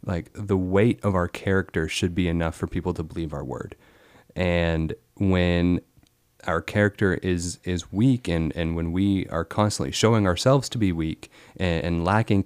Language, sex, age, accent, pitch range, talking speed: English, male, 30-49, American, 85-100 Hz, 175 wpm